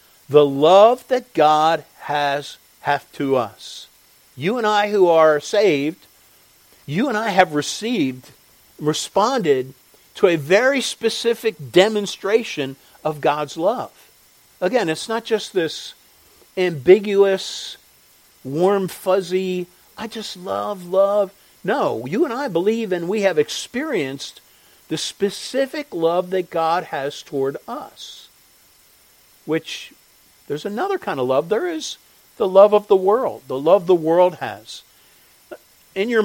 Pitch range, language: 135-195 Hz, English